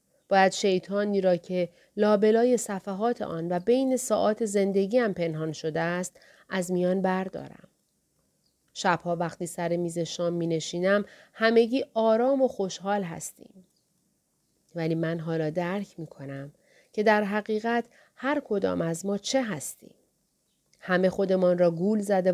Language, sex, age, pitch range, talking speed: Persian, female, 40-59, 170-210 Hz, 135 wpm